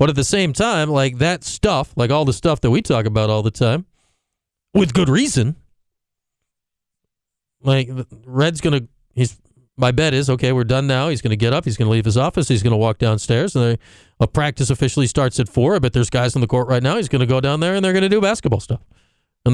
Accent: American